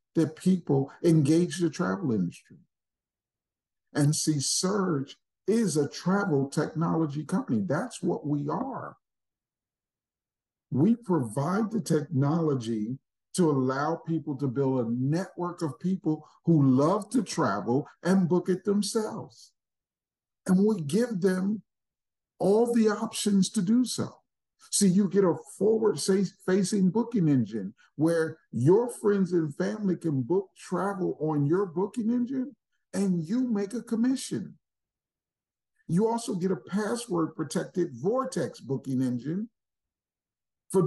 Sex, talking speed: male, 125 wpm